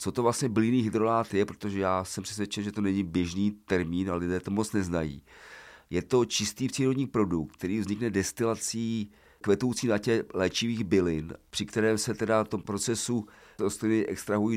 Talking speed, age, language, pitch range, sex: 170 wpm, 40-59, Czech, 95-110 Hz, male